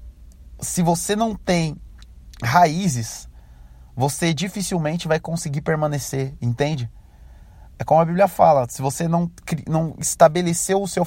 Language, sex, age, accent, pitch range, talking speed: Portuguese, male, 20-39, Brazilian, 115-180 Hz, 125 wpm